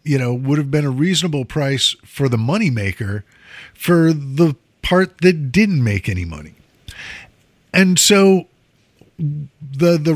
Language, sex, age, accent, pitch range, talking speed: English, male, 50-69, American, 120-165 Hz, 140 wpm